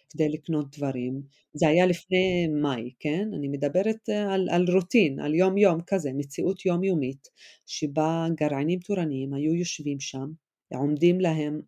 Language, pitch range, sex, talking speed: Hebrew, 150-185 Hz, female, 140 wpm